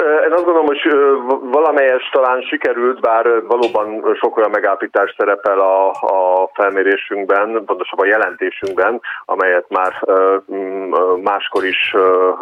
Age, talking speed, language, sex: 40-59, 105 wpm, Hungarian, male